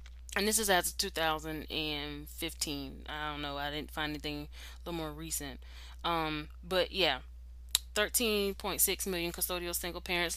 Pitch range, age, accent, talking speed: 145-185 Hz, 20-39, American, 145 wpm